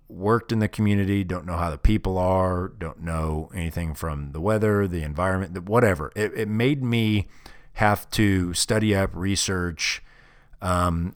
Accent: American